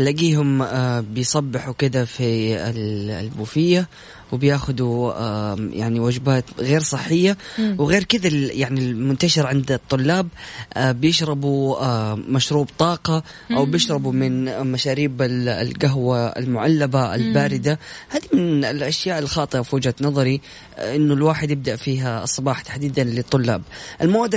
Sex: female